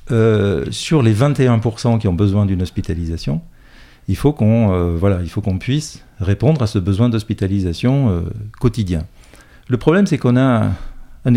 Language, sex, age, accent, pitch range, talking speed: French, male, 50-69, French, 95-115 Hz, 150 wpm